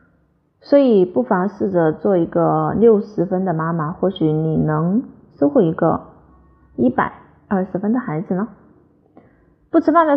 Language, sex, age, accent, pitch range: Chinese, female, 30-49, native, 175-235 Hz